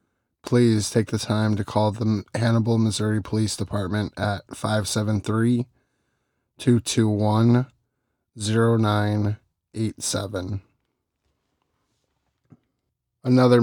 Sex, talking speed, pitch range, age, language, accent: male, 60 wpm, 105-120 Hz, 20-39, English, American